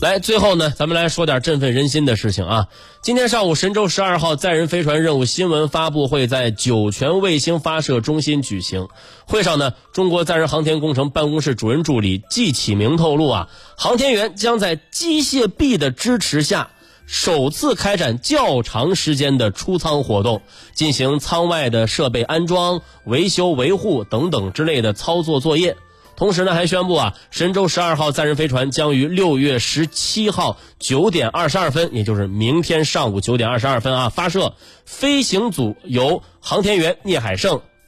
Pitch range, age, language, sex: 115-170 Hz, 30-49, Chinese, male